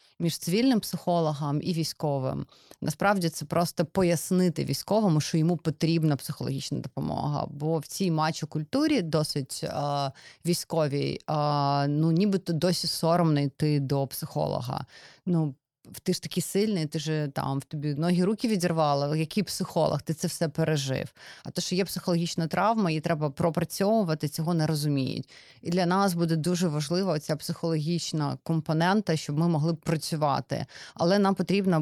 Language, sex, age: Russian, female, 30-49